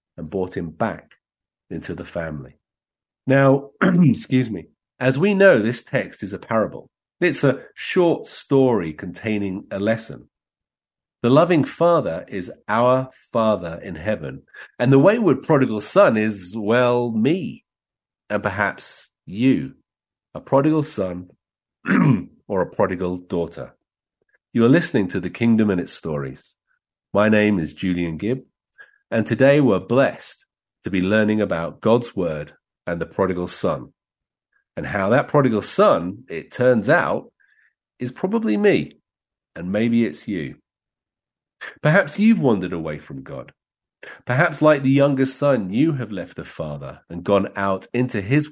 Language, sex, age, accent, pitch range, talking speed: English, male, 40-59, British, 90-135 Hz, 140 wpm